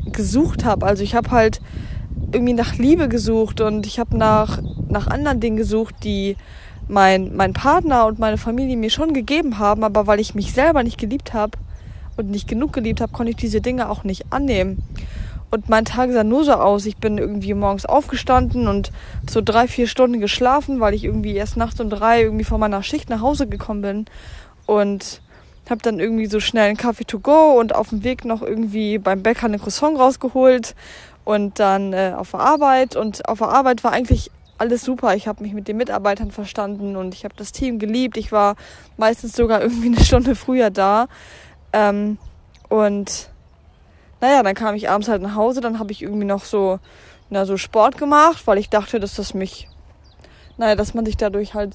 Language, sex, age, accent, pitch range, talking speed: German, female, 20-39, German, 205-240 Hz, 200 wpm